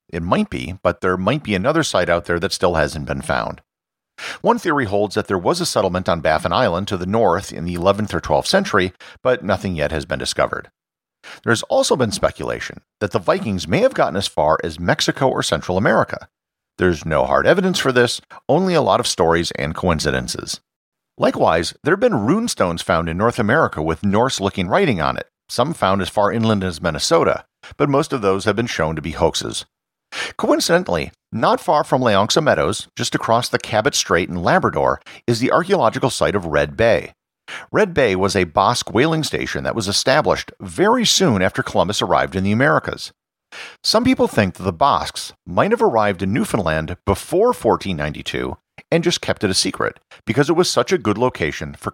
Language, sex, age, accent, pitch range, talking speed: English, male, 50-69, American, 90-130 Hz, 195 wpm